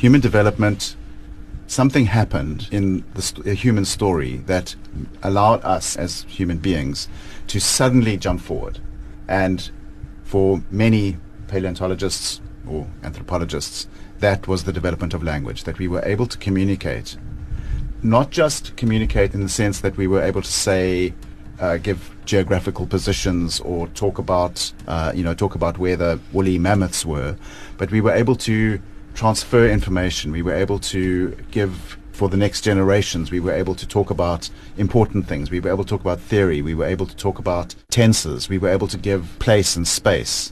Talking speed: 165 wpm